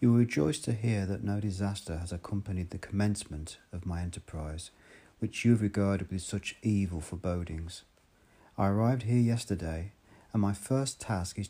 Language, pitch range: English, 90-110 Hz